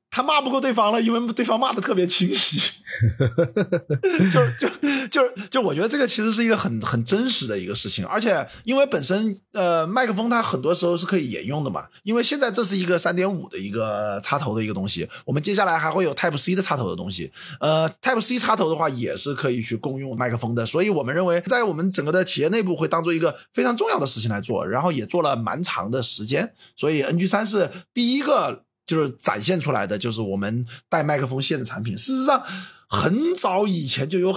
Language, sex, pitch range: Chinese, male, 135-210 Hz